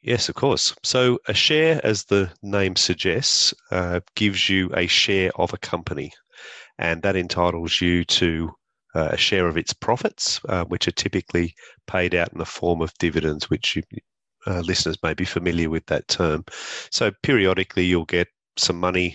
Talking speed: 170 wpm